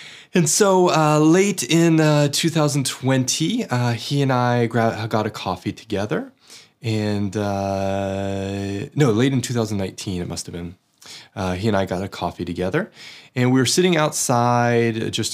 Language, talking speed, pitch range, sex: English, 155 wpm, 105-145 Hz, male